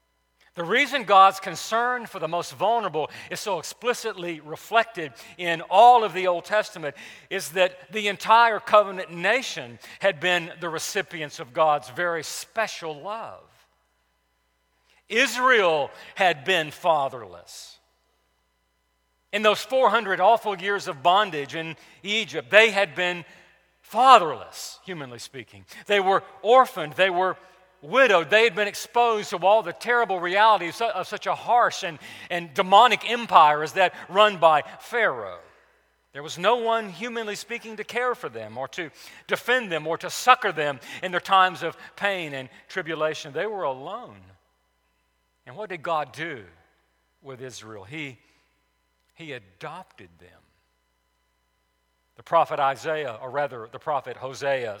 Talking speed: 140 wpm